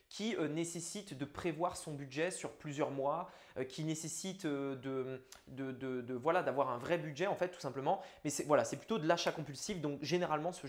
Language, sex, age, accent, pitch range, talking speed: French, male, 20-39, French, 150-200 Hz, 195 wpm